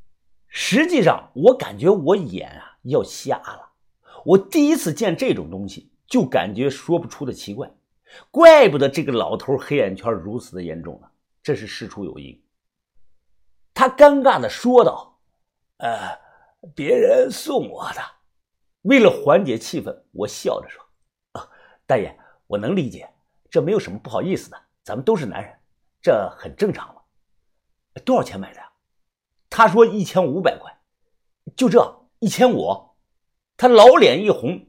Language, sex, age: Chinese, male, 50-69